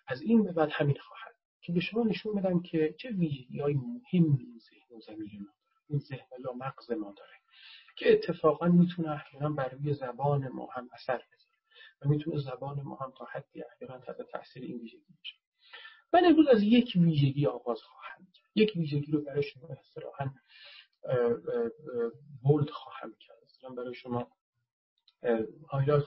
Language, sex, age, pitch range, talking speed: Persian, male, 40-59, 135-190 Hz, 165 wpm